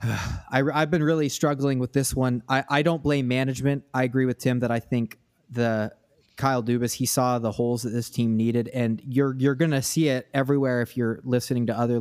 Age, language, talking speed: 30-49, English, 220 wpm